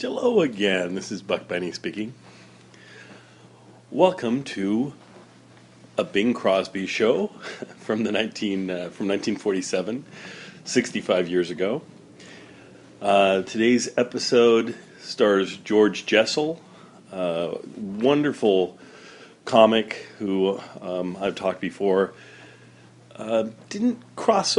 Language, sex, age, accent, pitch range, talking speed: English, male, 40-59, American, 85-110 Hz, 100 wpm